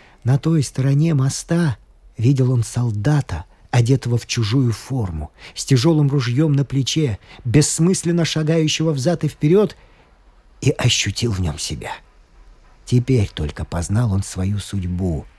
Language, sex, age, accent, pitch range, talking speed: Russian, male, 40-59, native, 100-165 Hz, 125 wpm